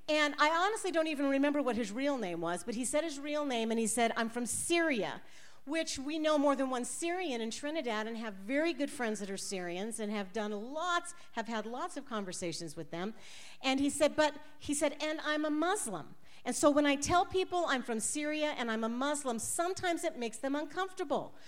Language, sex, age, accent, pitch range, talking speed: English, female, 50-69, American, 225-310 Hz, 220 wpm